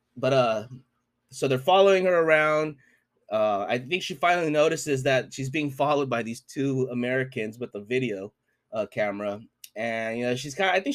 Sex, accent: male, American